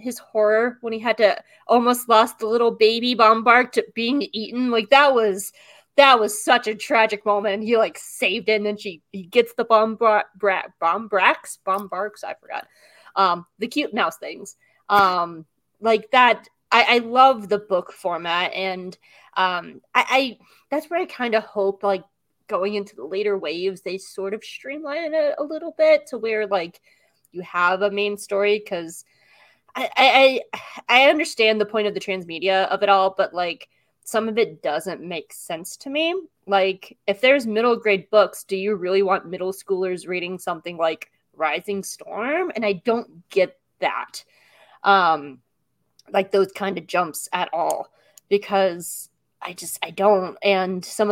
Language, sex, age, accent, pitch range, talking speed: English, female, 20-39, American, 185-225 Hz, 175 wpm